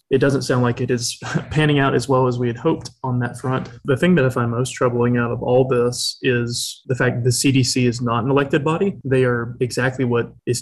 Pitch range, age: 125-140 Hz, 20-39